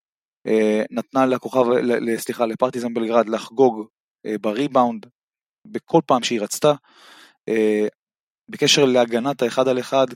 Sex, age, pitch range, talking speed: male, 20-39, 115-140 Hz, 95 wpm